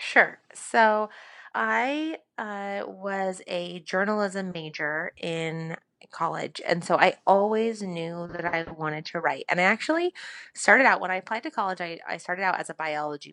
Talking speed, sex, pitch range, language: 165 wpm, female, 165-215 Hz, English